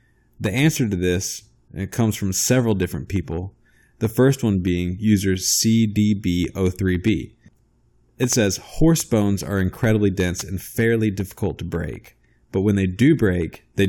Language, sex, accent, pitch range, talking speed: English, male, American, 95-115 Hz, 145 wpm